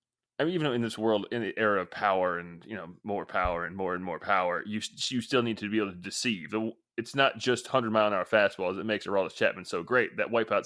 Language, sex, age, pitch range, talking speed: English, male, 20-39, 105-125 Hz, 240 wpm